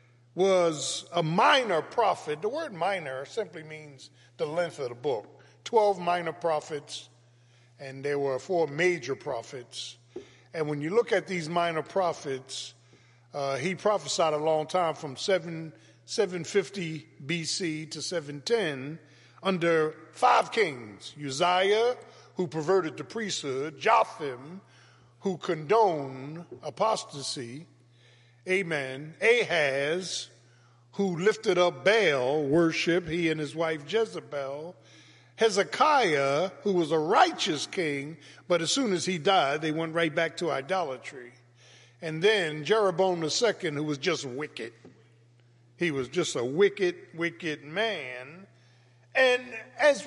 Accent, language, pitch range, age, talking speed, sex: American, English, 135-190 Hz, 50-69, 125 wpm, male